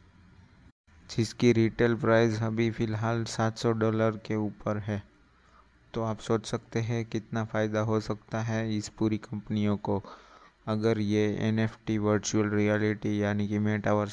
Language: Hindi